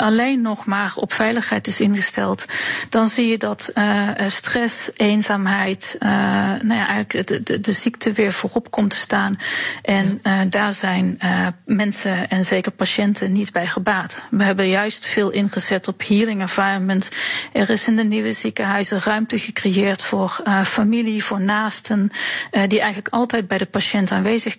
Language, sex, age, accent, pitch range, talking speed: Dutch, female, 40-59, Dutch, 195-220 Hz, 165 wpm